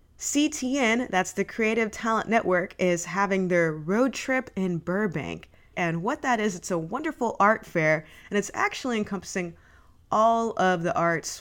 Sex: female